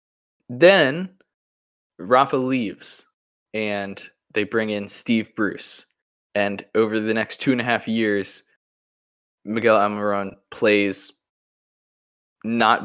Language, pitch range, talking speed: English, 100-115 Hz, 105 wpm